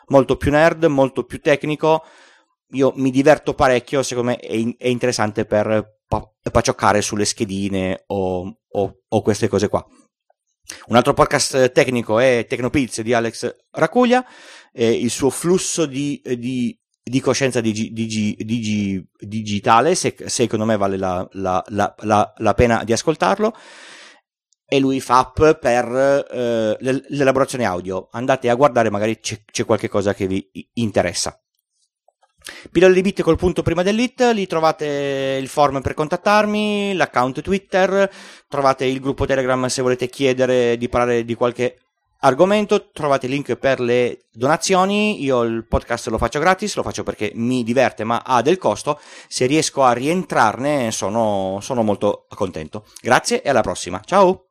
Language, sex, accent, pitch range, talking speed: Italian, male, native, 110-150 Hz, 150 wpm